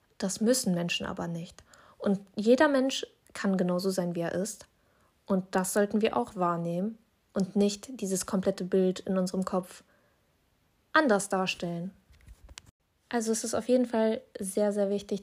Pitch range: 190-235 Hz